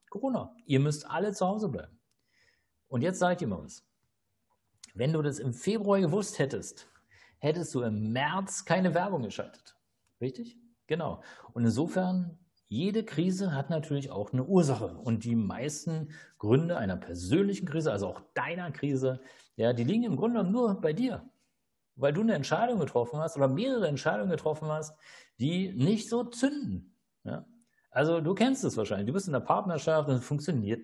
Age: 50-69